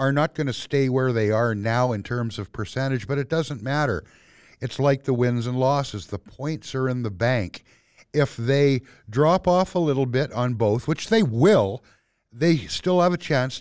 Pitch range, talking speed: 120-155 Hz, 205 wpm